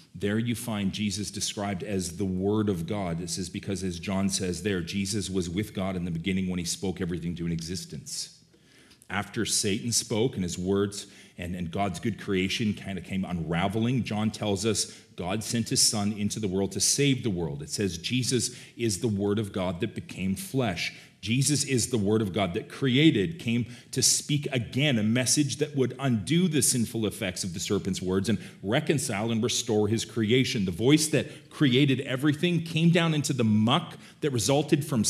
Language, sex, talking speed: English, male, 195 wpm